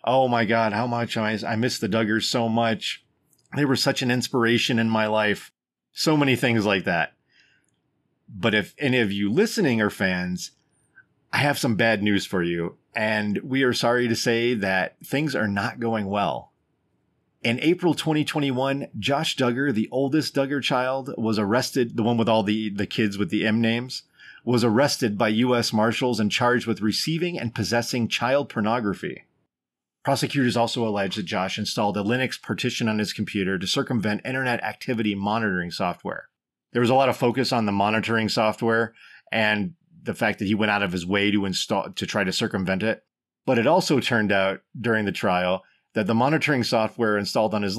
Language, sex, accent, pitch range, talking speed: English, male, American, 105-130 Hz, 185 wpm